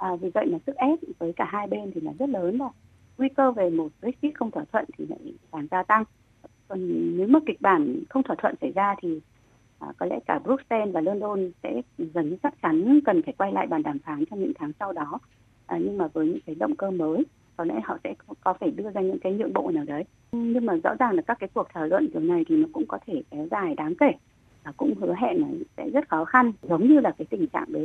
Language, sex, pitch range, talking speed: Vietnamese, female, 190-310 Hz, 265 wpm